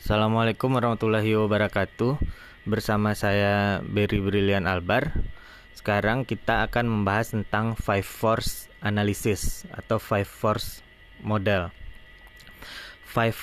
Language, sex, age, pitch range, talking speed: Indonesian, male, 20-39, 100-115 Hz, 95 wpm